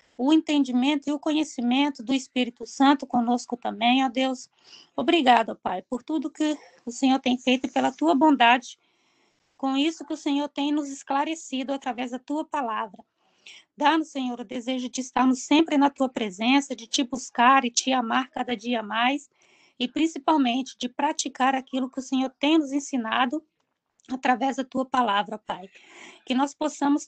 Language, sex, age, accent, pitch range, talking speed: Portuguese, female, 20-39, Brazilian, 245-290 Hz, 165 wpm